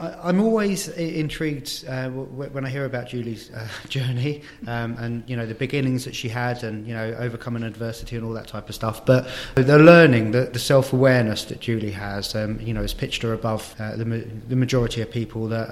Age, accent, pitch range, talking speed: 30-49, British, 115-140 Hz, 205 wpm